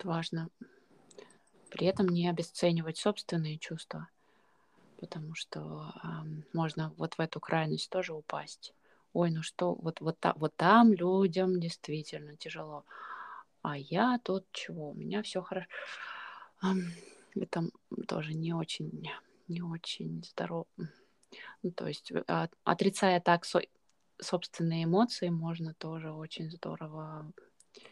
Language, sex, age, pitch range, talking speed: Russian, female, 20-39, 150-175 Hz, 120 wpm